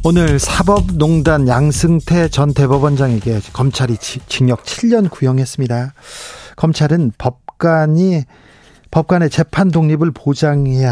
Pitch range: 130-165 Hz